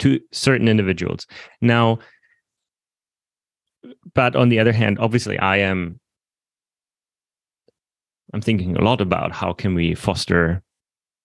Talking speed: 110 wpm